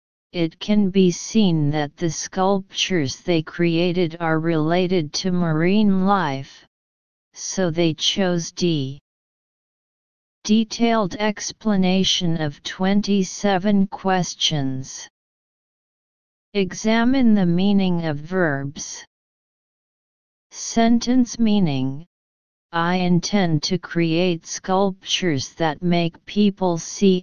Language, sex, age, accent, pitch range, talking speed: English, female, 40-59, American, 155-195 Hz, 85 wpm